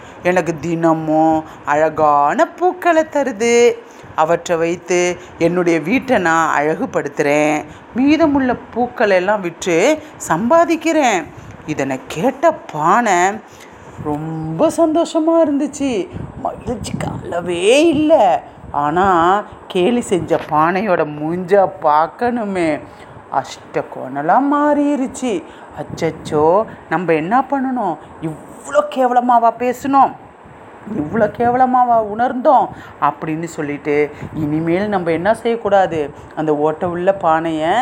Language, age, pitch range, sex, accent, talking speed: Tamil, 30-49, 155-255 Hz, female, native, 80 wpm